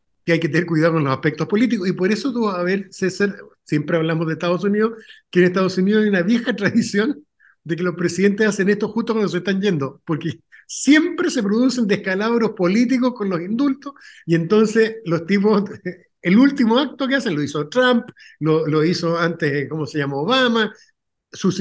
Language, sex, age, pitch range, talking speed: Spanish, male, 50-69, 160-220 Hz, 190 wpm